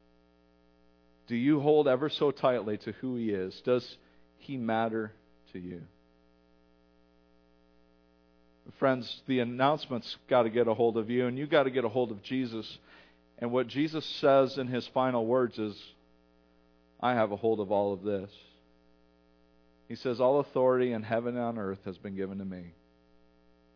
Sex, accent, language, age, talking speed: male, American, English, 50-69, 165 wpm